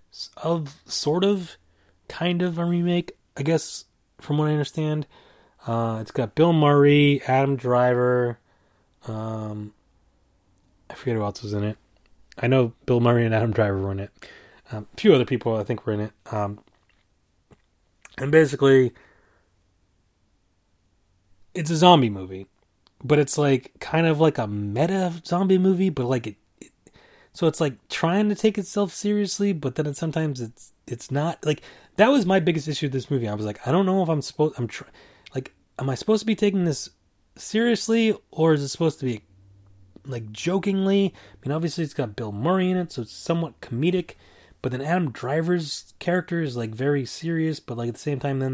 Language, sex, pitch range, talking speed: English, male, 105-165 Hz, 185 wpm